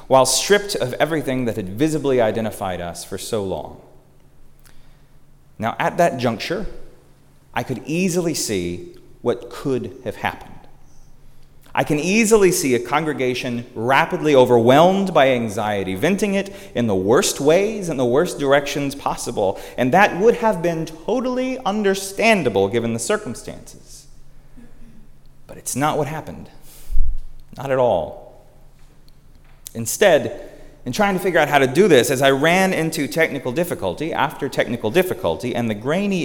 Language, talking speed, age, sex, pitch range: English, 140 wpm, 30-49, male, 120-165 Hz